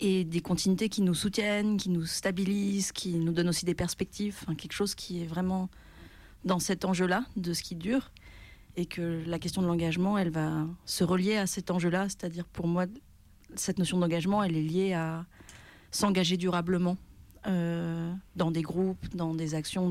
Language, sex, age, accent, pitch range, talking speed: French, female, 40-59, French, 165-190 Hz, 180 wpm